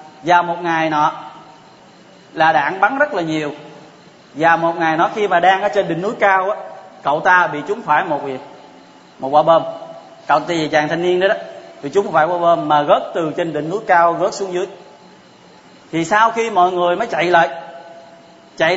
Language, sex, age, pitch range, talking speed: Vietnamese, male, 20-39, 160-210 Hz, 205 wpm